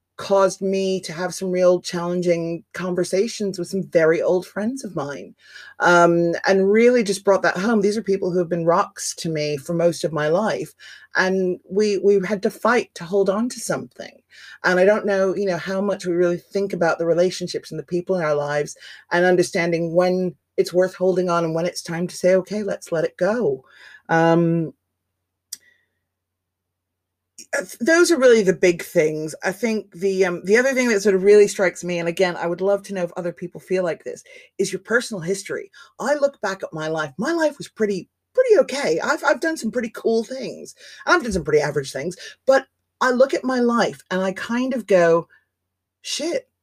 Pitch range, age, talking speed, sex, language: 175-240 Hz, 30-49, 205 wpm, female, English